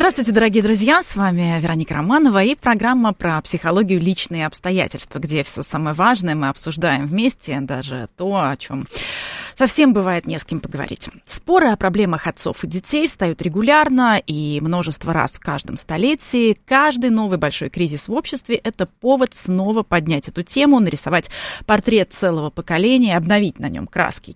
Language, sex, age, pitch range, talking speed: Russian, female, 20-39, 160-230 Hz, 165 wpm